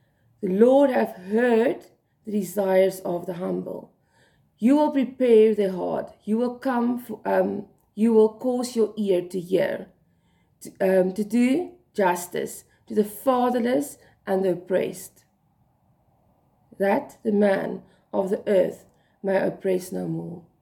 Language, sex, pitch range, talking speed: English, female, 190-240 Hz, 135 wpm